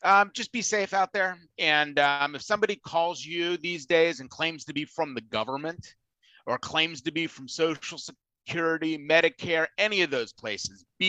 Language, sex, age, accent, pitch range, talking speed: English, male, 30-49, American, 130-170 Hz, 185 wpm